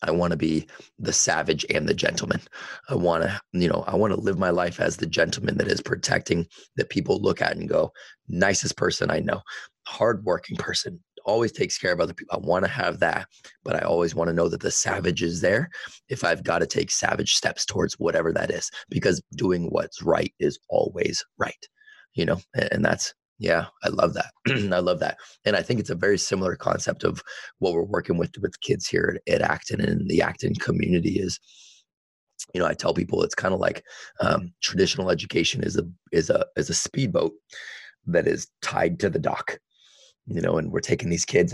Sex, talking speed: male, 210 wpm